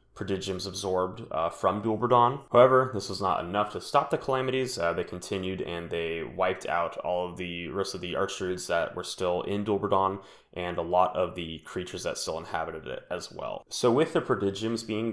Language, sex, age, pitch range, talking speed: English, male, 20-39, 90-105 Hz, 200 wpm